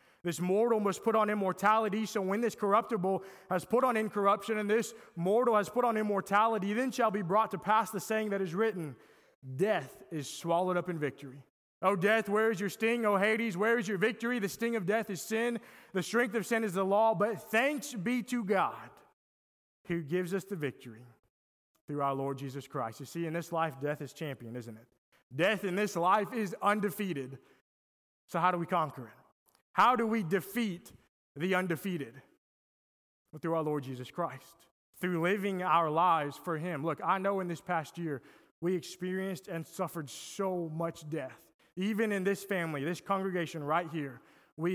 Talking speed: 190 wpm